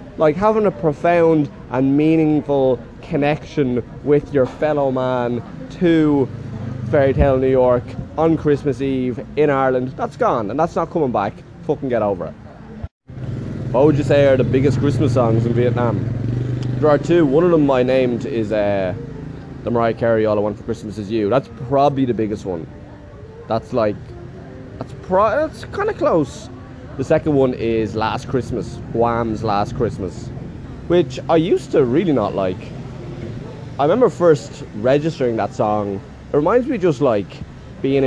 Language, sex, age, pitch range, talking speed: English, male, 20-39, 115-145 Hz, 165 wpm